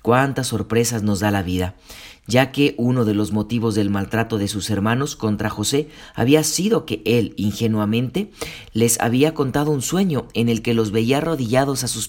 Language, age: Spanish, 40-59